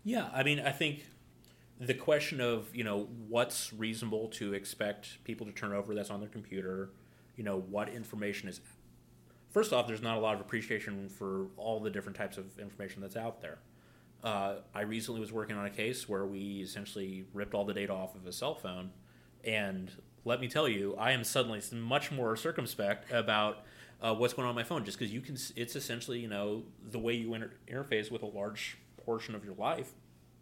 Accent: American